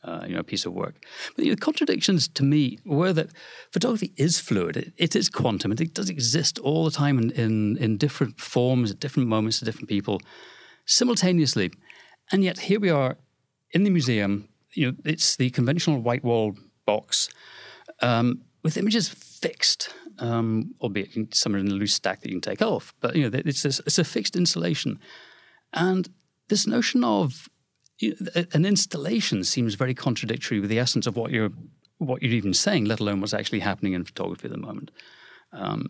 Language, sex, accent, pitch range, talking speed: English, male, British, 115-170 Hz, 190 wpm